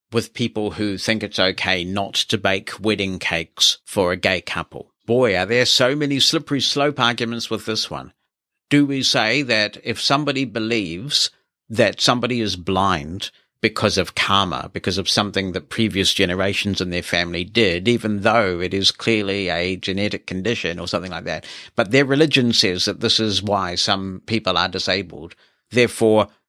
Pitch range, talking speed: 95-120 Hz, 170 wpm